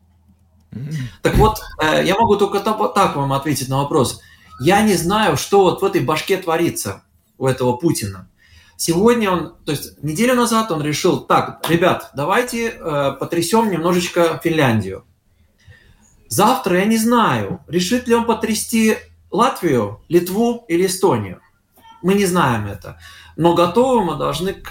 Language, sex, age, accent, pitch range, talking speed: Russian, male, 20-39, native, 130-185 Hz, 135 wpm